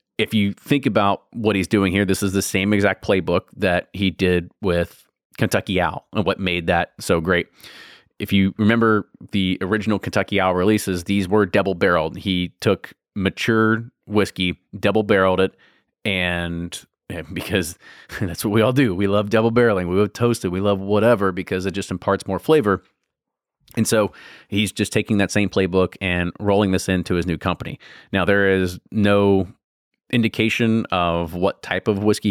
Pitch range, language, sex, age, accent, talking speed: 95-105 Hz, English, male, 30-49, American, 170 wpm